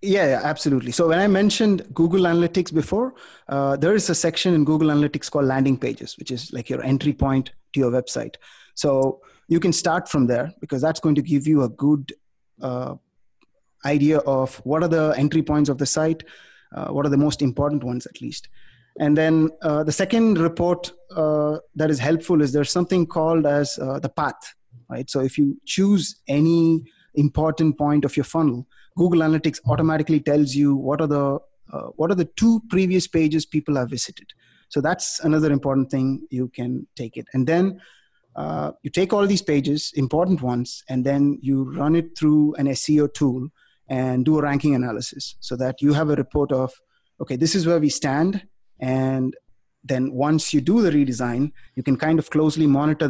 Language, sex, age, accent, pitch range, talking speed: English, male, 30-49, Indian, 135-160 Hz, 190 wpm